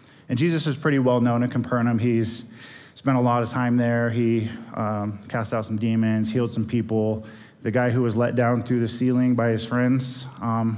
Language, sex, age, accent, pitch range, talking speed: English, male, 20-39, American, 110-135 Hz, 200 wpm